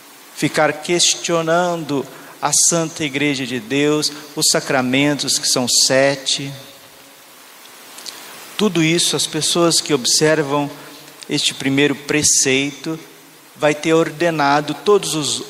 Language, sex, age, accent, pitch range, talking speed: Portuguese, male, 50-69, Brazilian, 140-160 Hz, 100 wpm